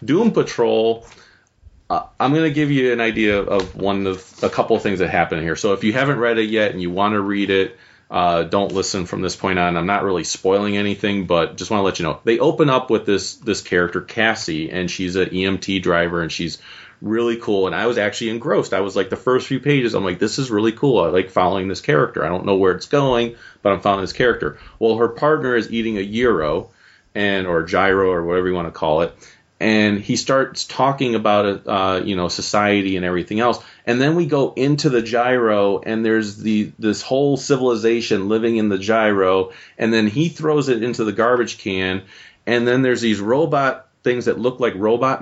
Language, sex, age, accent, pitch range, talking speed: English, male, 30-49, American, 100-125 Hz, 225 wpm